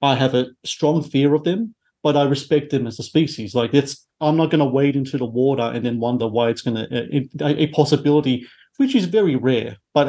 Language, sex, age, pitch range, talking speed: English, male, 40-59, 125-150 Hz, 230 wpm